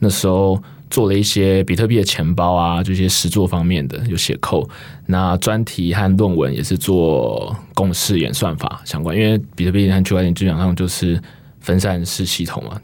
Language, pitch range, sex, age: Chinese, 90-110 Hz, male, 20-39